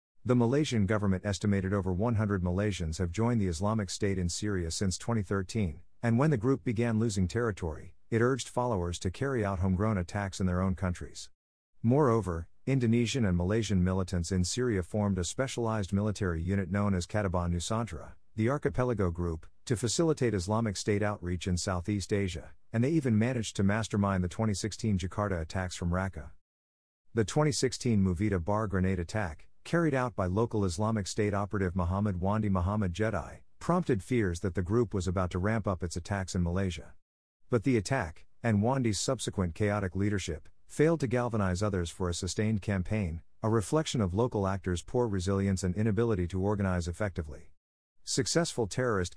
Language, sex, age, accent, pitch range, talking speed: English, male, 50-69, American, 90-115 Hz, 165 wpm